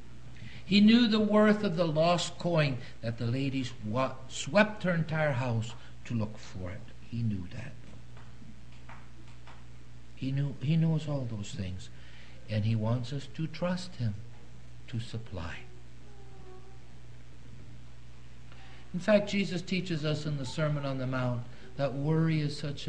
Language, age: English, 60-79